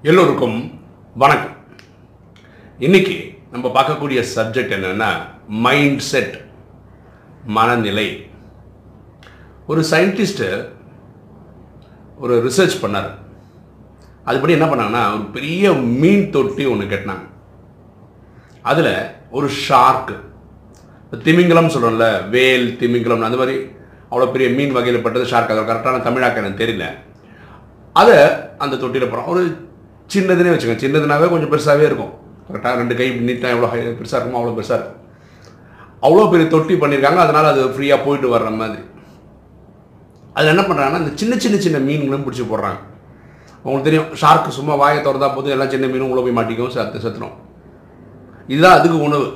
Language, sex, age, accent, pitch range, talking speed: Tamil, male, 50-69, native, 115-150 Hz, 125 wpm